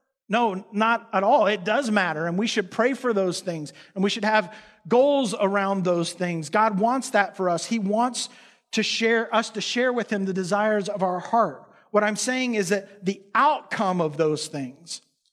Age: 50-69